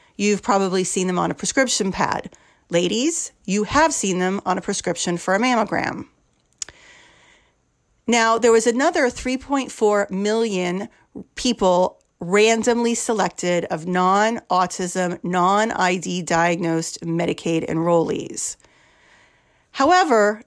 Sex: female